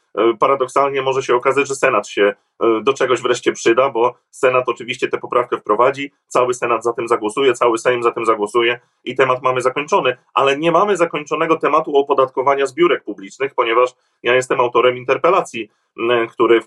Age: 30-49